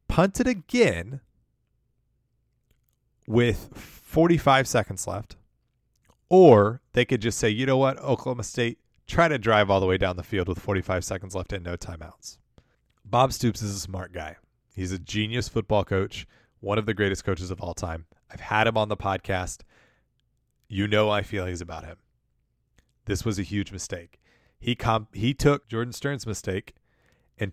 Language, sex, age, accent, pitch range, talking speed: English, male, 30-49, American, 100-125 Hz, 165 wpm